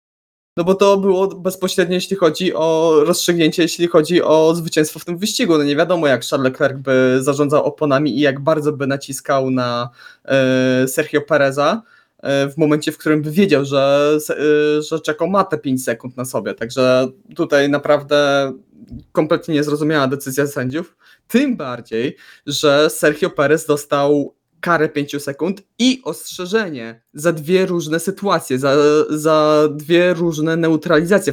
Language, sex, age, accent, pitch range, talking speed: Polish, male, 20-39, native, 140-170 Hz, 145 wpm